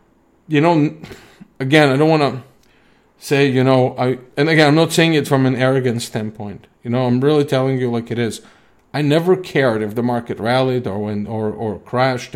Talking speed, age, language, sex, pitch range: 205 wpm, 40-59, English, male, 115-140 Hz